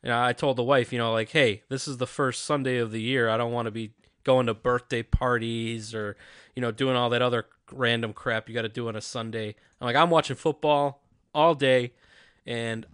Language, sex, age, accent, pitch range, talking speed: English, male, 20-39, American, 125-175 Hz, 230 wpm